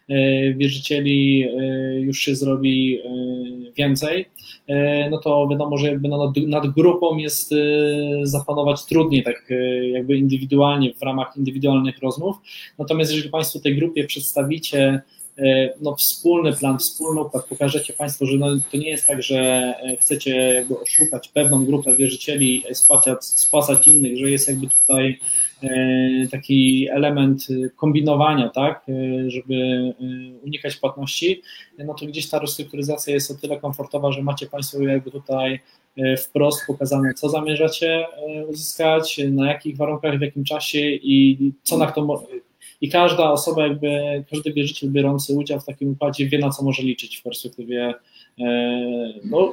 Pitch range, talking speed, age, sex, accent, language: 135-150 Hz, 140 wpm, 20-39, male, native, Polish